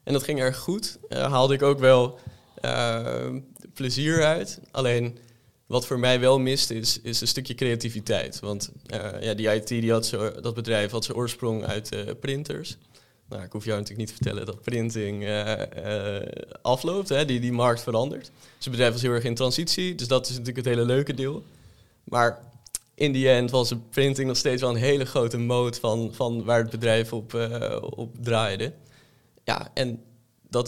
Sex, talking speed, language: male, 195 wpm, Dutch